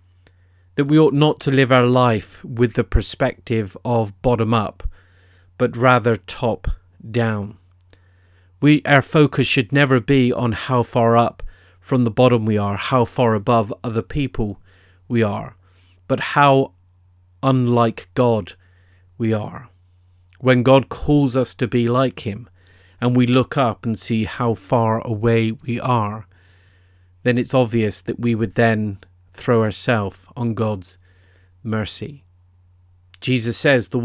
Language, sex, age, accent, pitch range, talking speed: English, male, 40-59, British, 90-125 Hz, 135 wpm